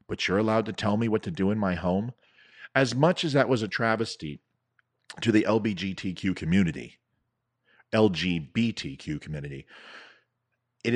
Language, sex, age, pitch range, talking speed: English, male, 40-59, 95-125 Hz, 140 wpm